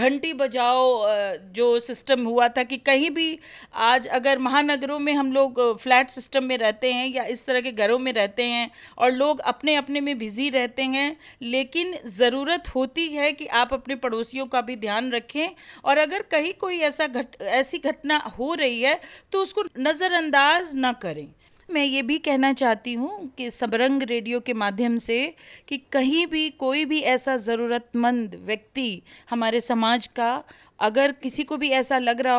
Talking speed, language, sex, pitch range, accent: 175 wpm, Hindi, female, 235-280 Hz, native